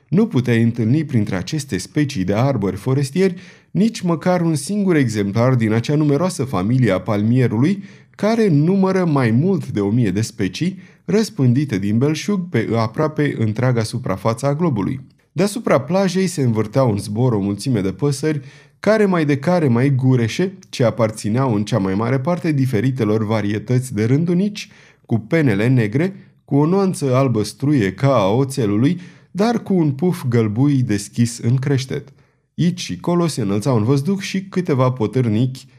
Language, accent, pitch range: Romanian, native, 115-165 Hz